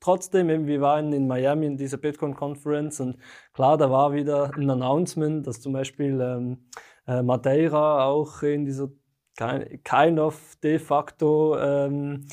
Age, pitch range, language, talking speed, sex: 20-39, 140-155 Hz, German, 145 wpm, male